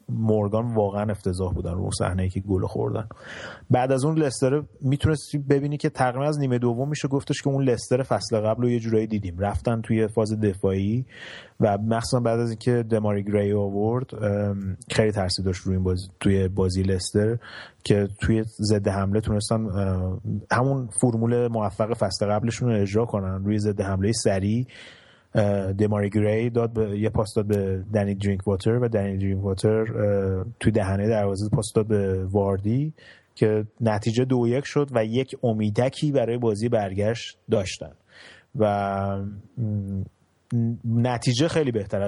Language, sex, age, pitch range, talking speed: Persian, male, 30-49, 100-115 Hz, 150 wpm